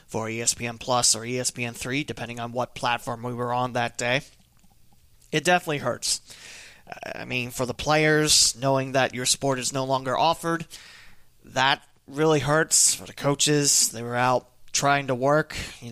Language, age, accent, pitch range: English, 30-49, American, 125-145 Hz